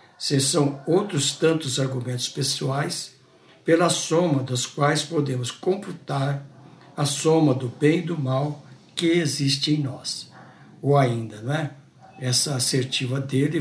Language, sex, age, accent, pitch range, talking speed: Portuguese, male, 60-79, Brazilian, 130-150 Hz, 130 wpm